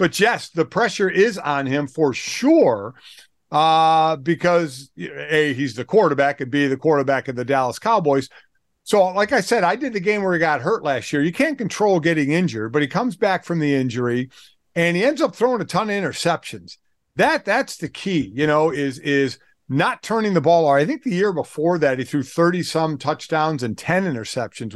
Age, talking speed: 50-69, 210 wpm